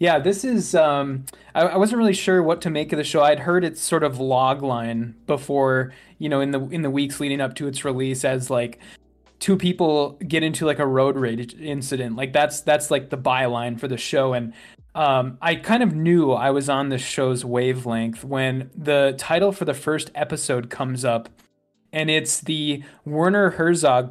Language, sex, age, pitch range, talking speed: English, male, 20-39, 130-165 Hz, 200 wpm